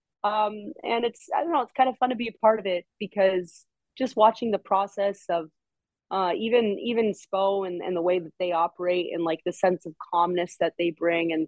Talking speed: 225 wpm